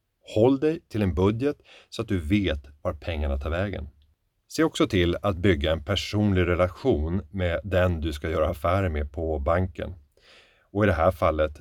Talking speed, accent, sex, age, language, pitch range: 180 wpm, native, male, 30-49, Swedish, 85-105 Hz